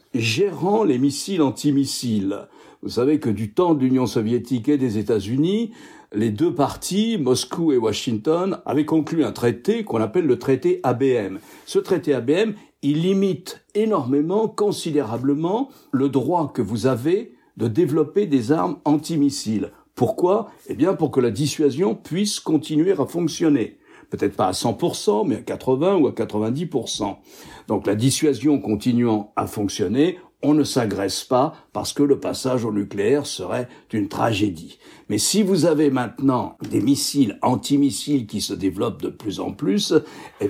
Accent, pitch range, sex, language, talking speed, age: French, 125-165 Hz, male, French, 155 wpm, 60-79